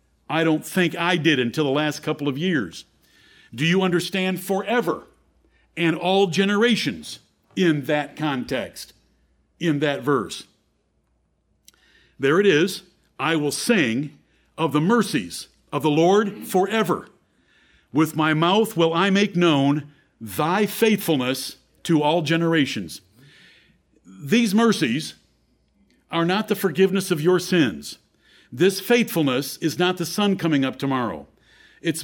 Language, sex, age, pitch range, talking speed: English, male, 50-69, 150-195 Hz, 125 wpm